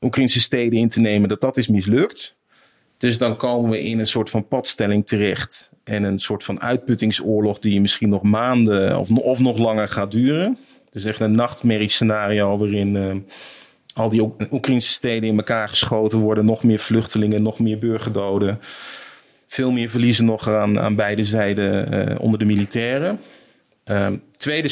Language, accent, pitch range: Dutch, Dutch, 105-130 Hz